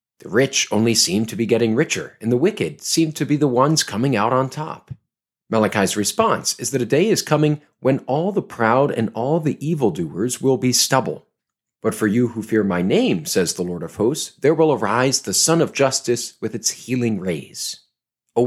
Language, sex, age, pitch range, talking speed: English, male, 40-59, 115-160 Hz, 205 wpm